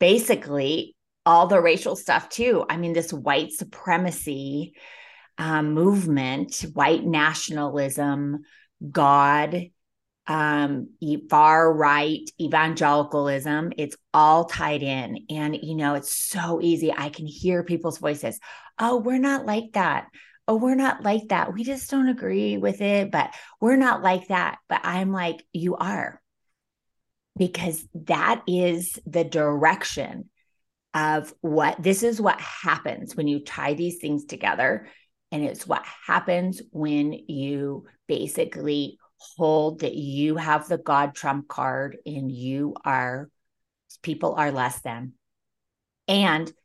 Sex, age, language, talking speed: female, 30-49, English, 130 wpm